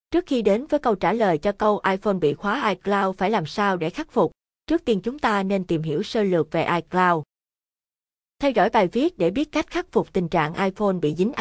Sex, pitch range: female, 180-220 Hz